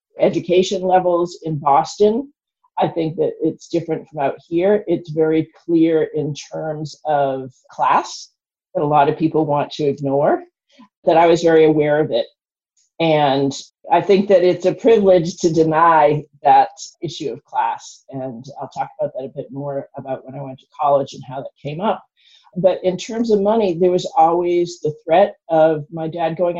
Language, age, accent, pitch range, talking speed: English, 50-69, American, 145-185 Hz, 180 wpm